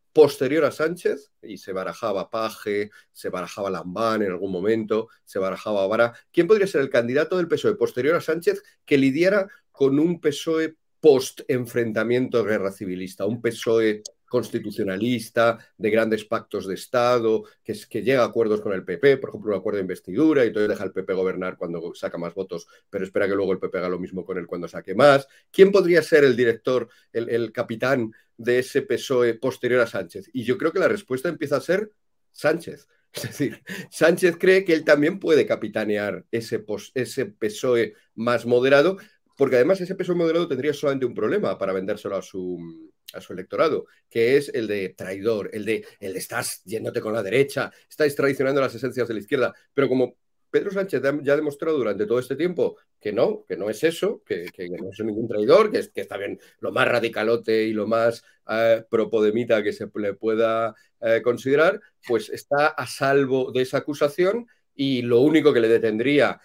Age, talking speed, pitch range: 40-59, 190 wpm, 115-175 Hz